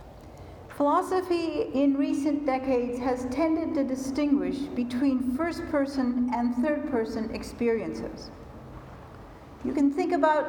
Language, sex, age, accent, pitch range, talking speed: English, female, 60-79, American, 245-295 Hz, 95 wpm